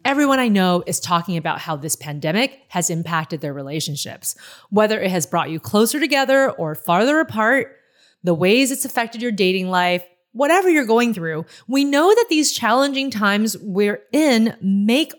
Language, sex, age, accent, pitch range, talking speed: English, female, 30-49, American, 180-265 Hz, 170 wpm